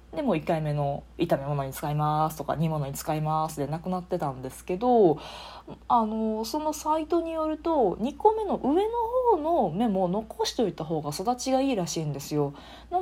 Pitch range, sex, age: 155-240 Hz, female, 20-39